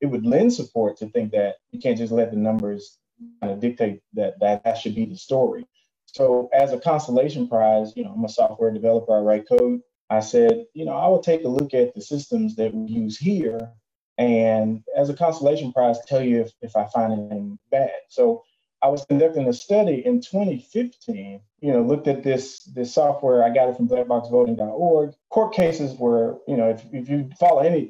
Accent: American